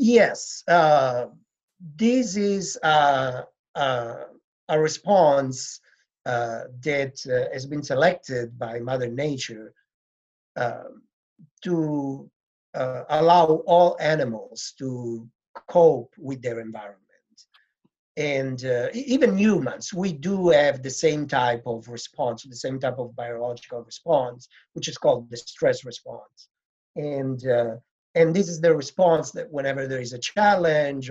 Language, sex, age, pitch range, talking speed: English, male, 50-69, 125-170 Hz, 125 wpm